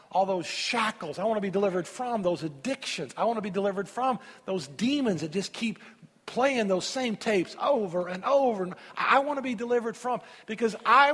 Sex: male